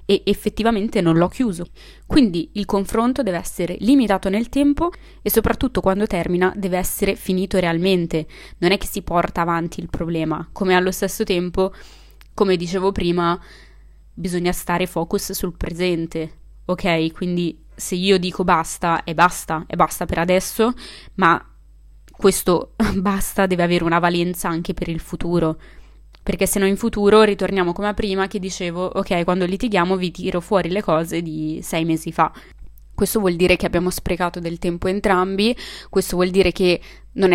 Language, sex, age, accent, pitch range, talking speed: Italian, female, 20-39, native, 175-200 Hz, 160 wpm